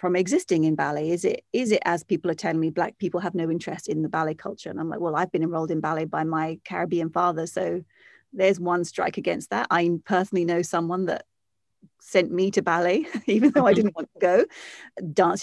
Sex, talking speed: female, 225 wpm